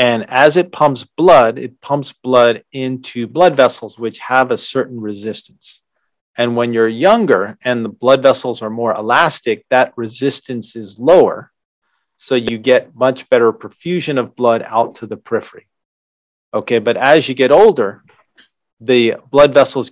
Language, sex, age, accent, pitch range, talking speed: English, male, 40-59, American, 115-130 Hz, 155 wpm